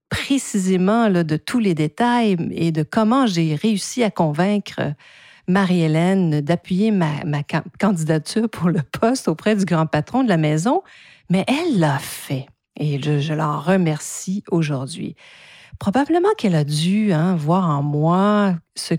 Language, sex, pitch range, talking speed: French, female, 150-195 Hz, 150 wpm